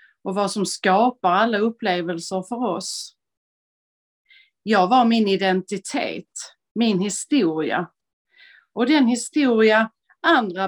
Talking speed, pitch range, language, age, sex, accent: 100 wpm, 185-235 Hz, Swedish, 30-49, female, native